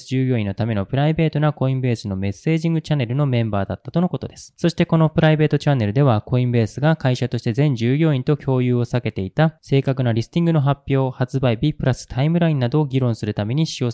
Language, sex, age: Japanese, male, 20-39